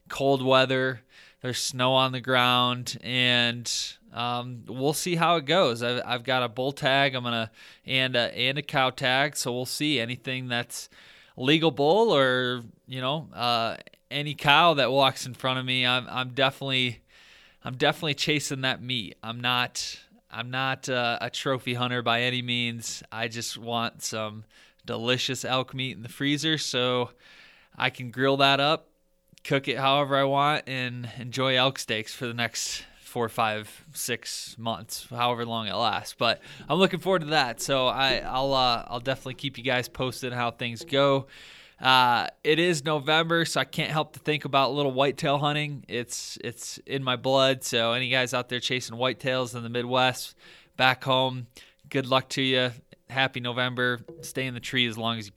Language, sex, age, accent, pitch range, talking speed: English, male, 20-39, American, 120-140 Hz, 180 wpm